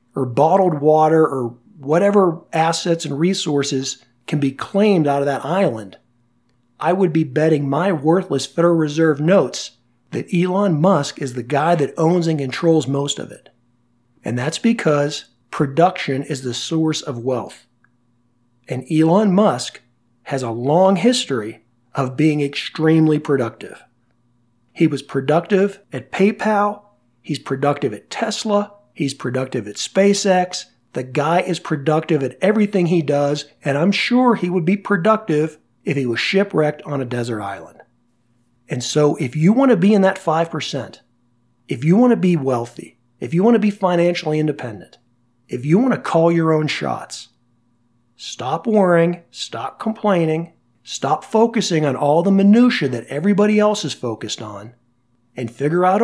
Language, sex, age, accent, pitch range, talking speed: English, male, 40-59, American, 125-185 Hz, 155 wpm